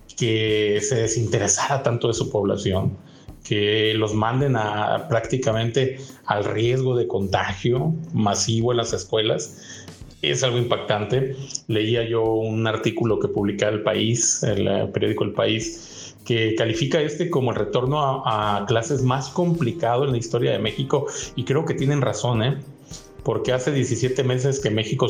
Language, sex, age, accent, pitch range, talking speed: Spanish, male, 40-59, Mexican, 110-135 Hz, 150 wpm